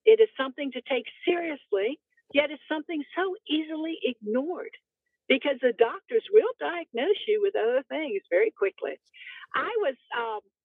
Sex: female